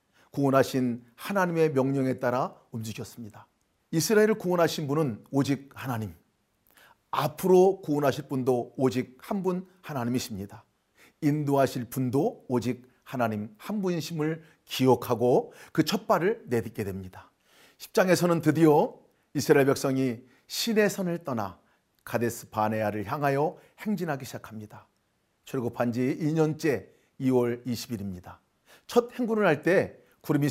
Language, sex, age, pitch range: Korean, male, 40-59, 120-160 Hz